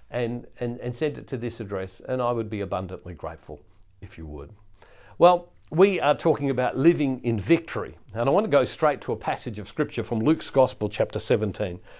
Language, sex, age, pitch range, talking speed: English, male, 50-69, 115-155 Hz, 205 wpm